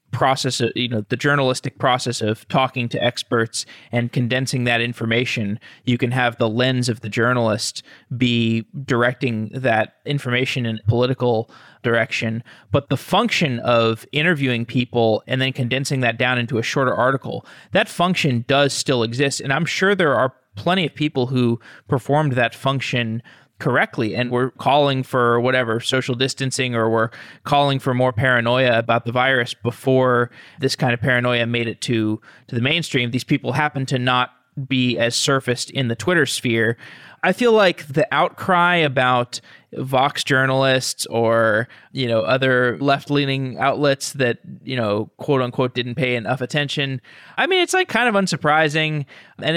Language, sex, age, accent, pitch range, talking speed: English, male, 20-39, American, 120-140 Hz, 160 wpm